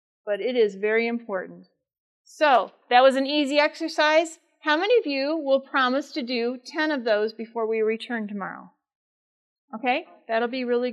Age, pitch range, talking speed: 40-59, 225-290 Hz, 165 wpm